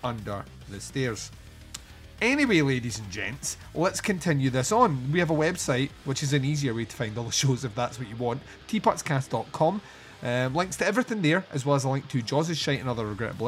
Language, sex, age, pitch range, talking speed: English, male, 30-49, 120-160 Hz, 210 wpm